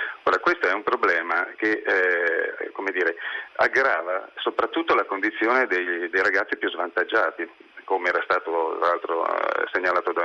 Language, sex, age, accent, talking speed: Italian, male, 40-59, native, 140 wpm